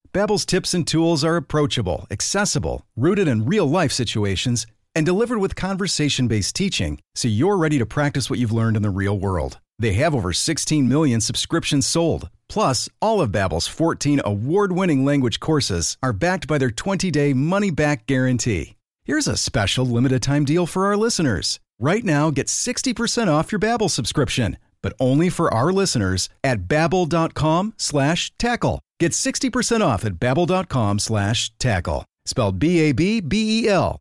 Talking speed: 145 wpm